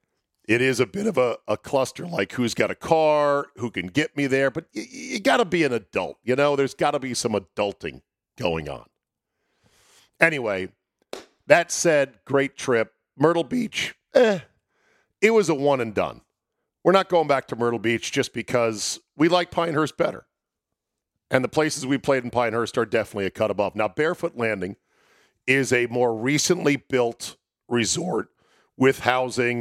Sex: male